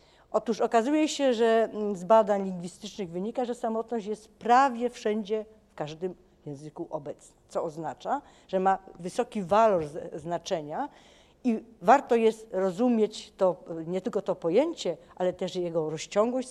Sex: female